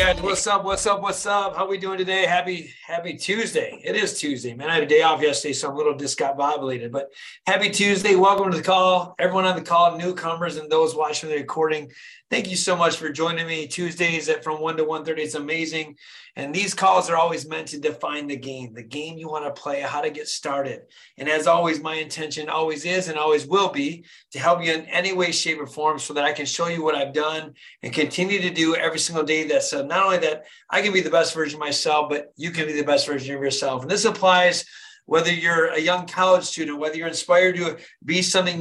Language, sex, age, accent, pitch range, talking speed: English, male, 30-49, American, 155-180 Hz, 240 wpm